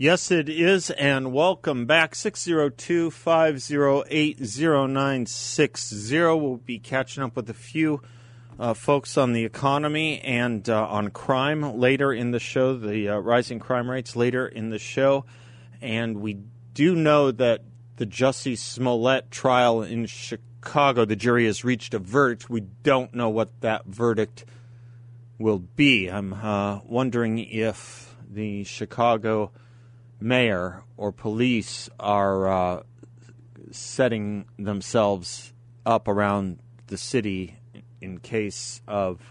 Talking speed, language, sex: 135 wpm, English, male